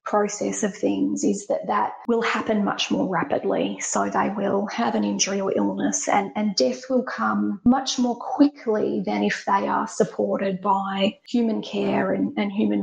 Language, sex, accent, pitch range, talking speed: English, female, Australian, 200-245 Hz, 180 wpm